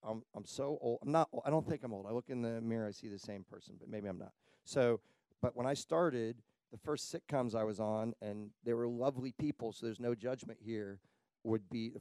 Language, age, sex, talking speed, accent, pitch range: English, 40-59, male, 250 wpm, American, 105-125 Hz